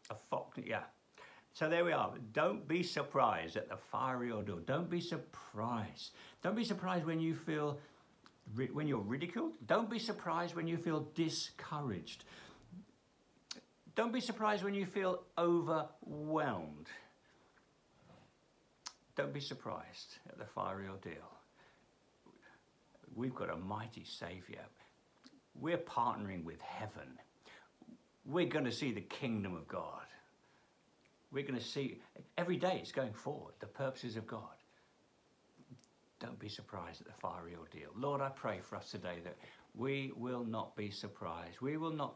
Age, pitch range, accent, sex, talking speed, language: 60-79, 105-165 Hz, British, male, 140 wpm, English